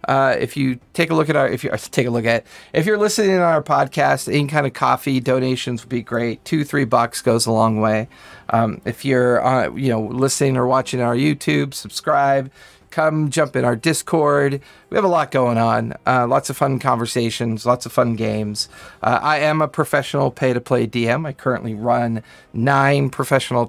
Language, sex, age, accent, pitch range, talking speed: English, male, 40-59, American, 120-155 Hz, 205 wpm